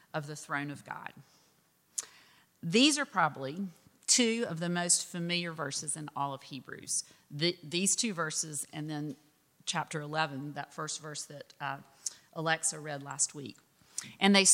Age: 40-59